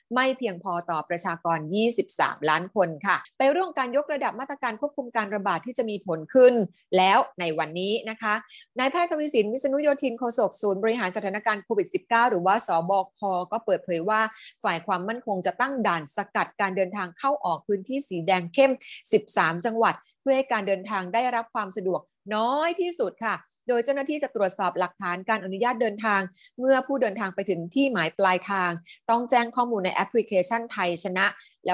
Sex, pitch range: female, 190-245 Hz